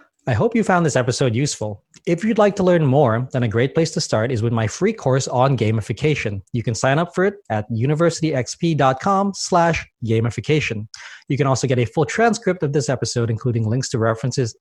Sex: male